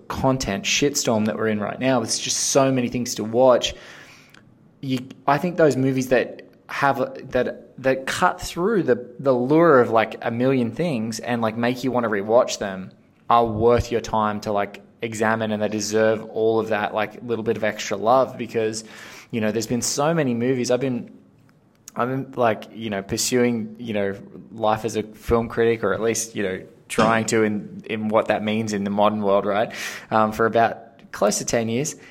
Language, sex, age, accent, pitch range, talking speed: English, male, 20-39, Australian, 110-130 Hz, 200 wpm